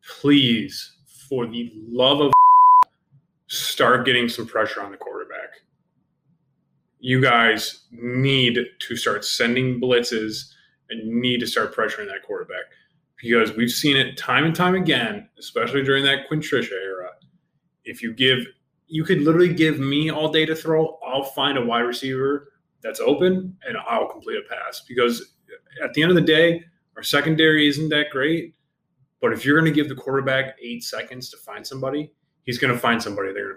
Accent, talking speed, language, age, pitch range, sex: American, 170 wpm, English, 20-39, 120-160 Hz, male